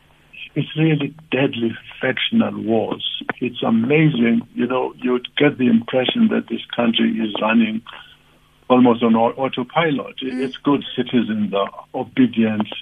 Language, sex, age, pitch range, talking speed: English, male, 60-79, 115-165 Hz, 120 wpm